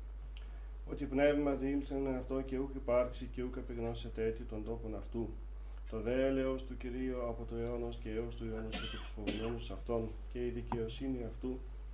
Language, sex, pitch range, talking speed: Greek, male, 110-125 Hz, 165 wpm